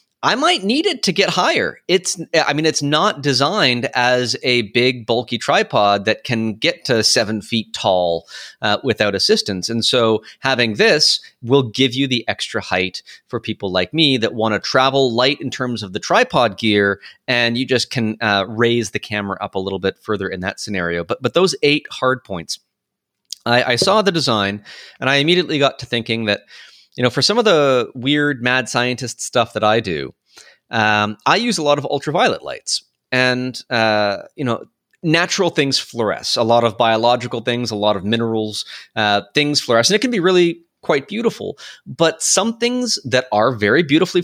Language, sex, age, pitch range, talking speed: English, male, 30-49, 110-145 Hz, 190 wpm